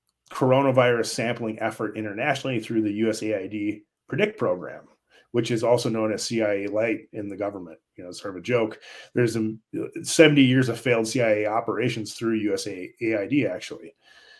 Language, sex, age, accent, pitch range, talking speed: English, male, 30-49, American, 110-135 Hz, 145 wpm